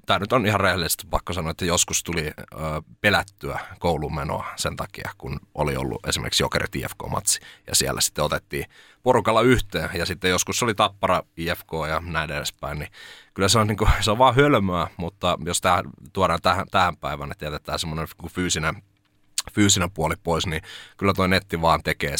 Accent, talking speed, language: native, 170 wpm, Finnish